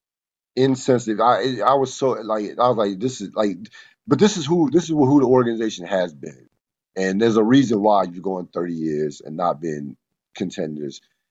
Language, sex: English, male